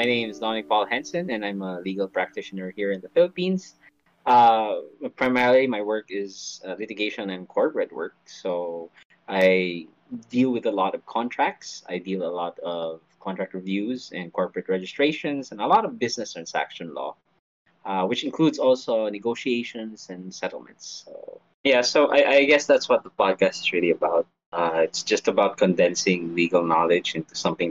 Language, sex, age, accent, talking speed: English, male, 20-39, Filipino, 170 wpm